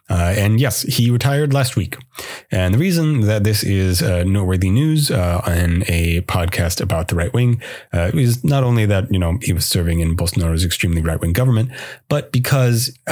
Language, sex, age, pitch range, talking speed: English, male, 30-49, 90-120 Hz, 190 wpm